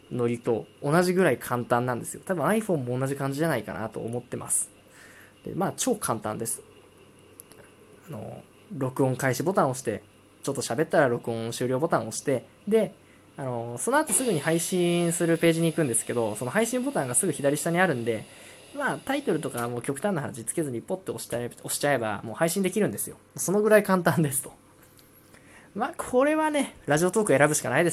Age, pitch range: 20-39, 115-170 Hz